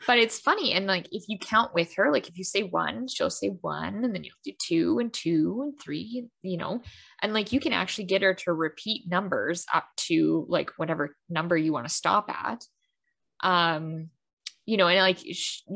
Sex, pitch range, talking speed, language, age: female, 175-230 Hz, 210 wpm, English, 10-29